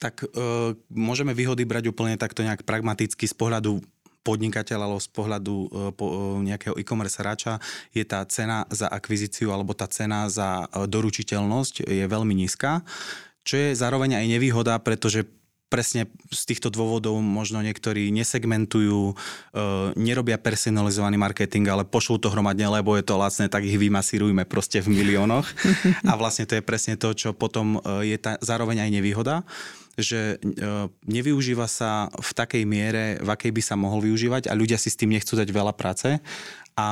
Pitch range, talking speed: 105-115 Hz, 160 wpm